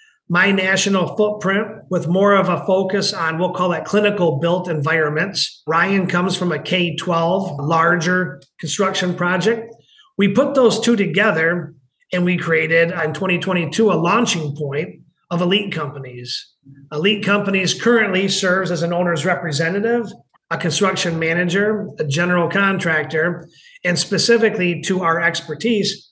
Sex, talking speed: male, 135 wpm